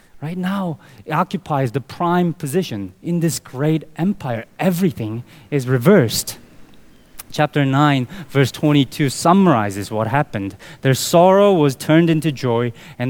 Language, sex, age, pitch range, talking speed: English, male, 20-39, 130-185 Hz, 130 wpm